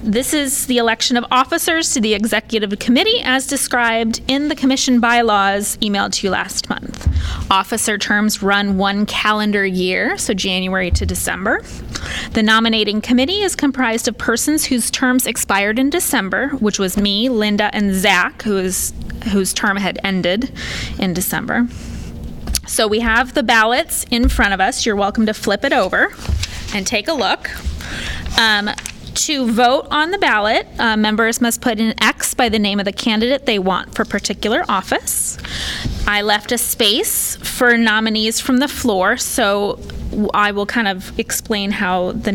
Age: 20-39